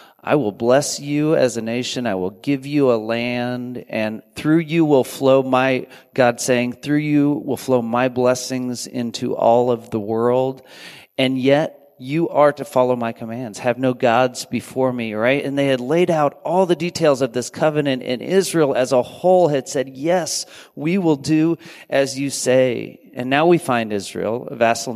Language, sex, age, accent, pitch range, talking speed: English, male, 40-59, American, 120-150 Hz, 190 wpm